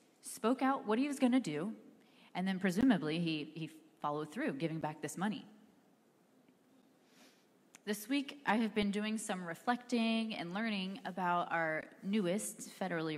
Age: 30-49